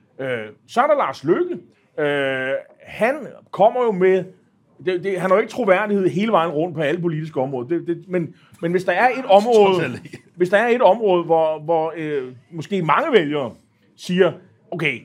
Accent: native